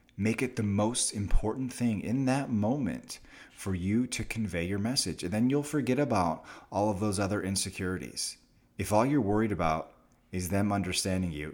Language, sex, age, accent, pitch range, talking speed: English, male, 30-49, American, 85-110 Hz, 175 wpm